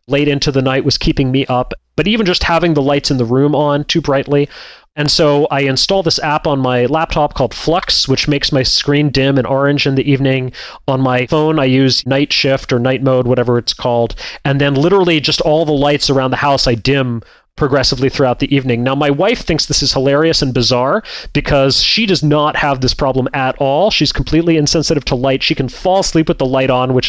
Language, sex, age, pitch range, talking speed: English, male, 30-49, 130-155 Hz, 225 wpm